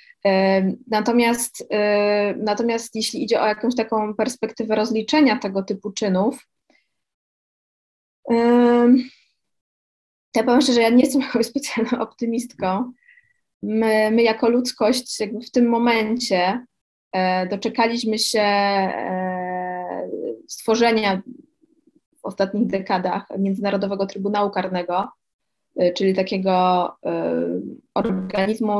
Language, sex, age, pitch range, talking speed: Polish, female, 20-39, 190-235 Hz, 90 wpm